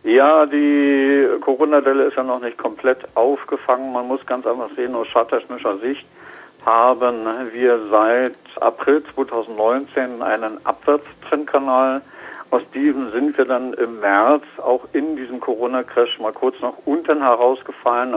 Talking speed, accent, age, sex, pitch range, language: 130 wpm, German, 50-69, male, 115-145 Hz, German